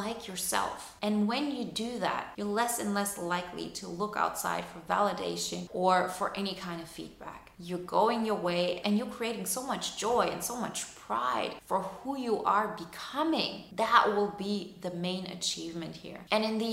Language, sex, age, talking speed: English, female, 30-49, 185 wpm